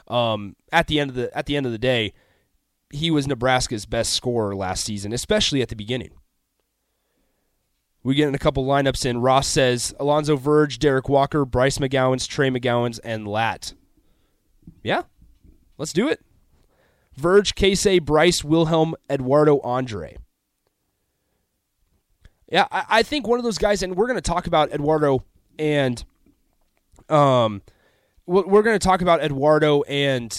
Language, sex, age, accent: English, male, 30-49, American